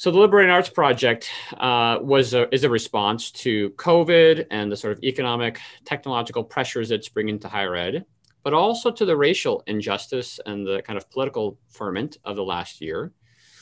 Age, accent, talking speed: 30-49, American, 185 wpm